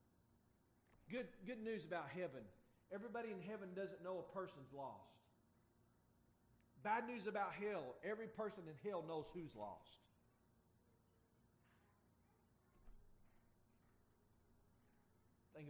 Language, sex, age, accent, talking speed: English, male, 40-59, American, 95 wpm